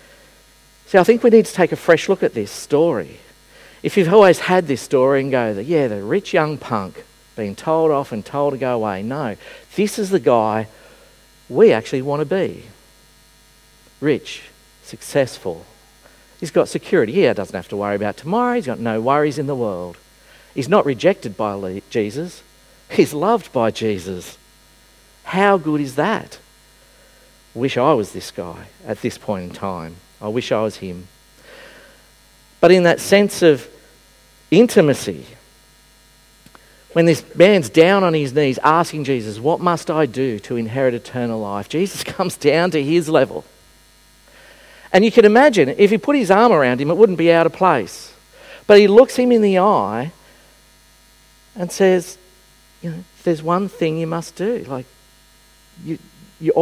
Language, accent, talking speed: English, Australian, 165 wpm